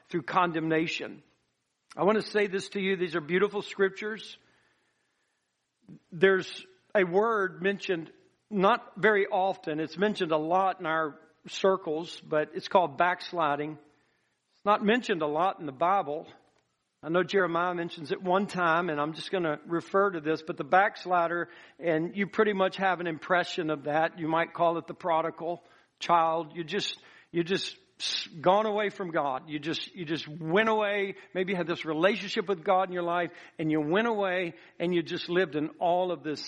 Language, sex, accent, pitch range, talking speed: English, male, American, 160-190 Hz, 180 wpm